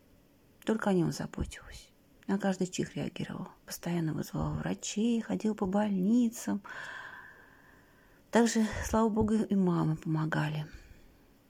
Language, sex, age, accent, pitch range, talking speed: Russian, female, 40-59, native, 165-230 Hz, 105 wpm